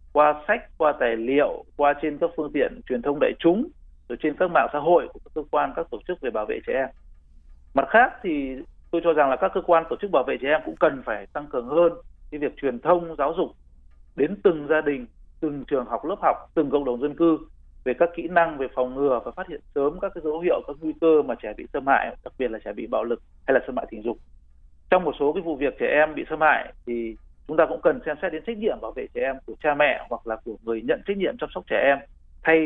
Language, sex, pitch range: Vietnamese, male, 120-170 Hz